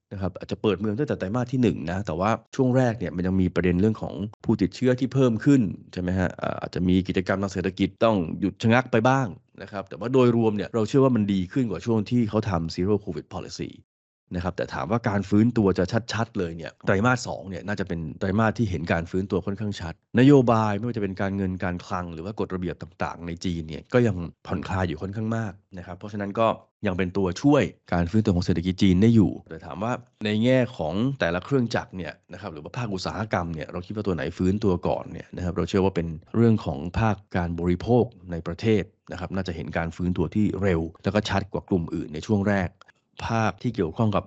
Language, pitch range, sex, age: Thai, 90-110 Hz, male, 20-39